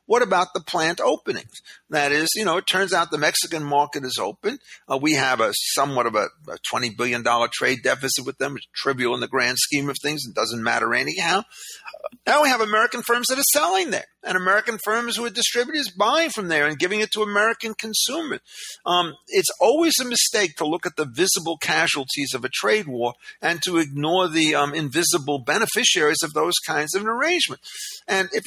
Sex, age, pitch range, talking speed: male, 50-69, 155-225 Hz, 205 wpm